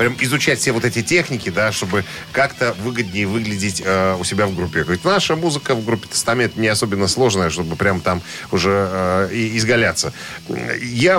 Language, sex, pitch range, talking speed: Russian, male, 95-130 Hz, 170 wpm